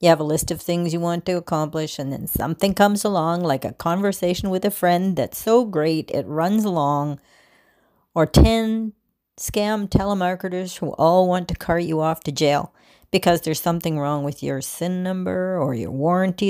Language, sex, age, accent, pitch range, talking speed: English, female, 40-59, American, 155-190 Hz, 185 wpm